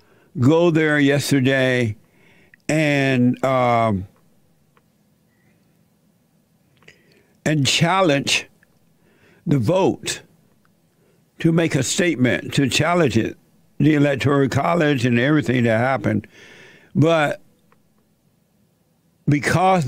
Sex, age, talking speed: male, 60-79, 75 wpm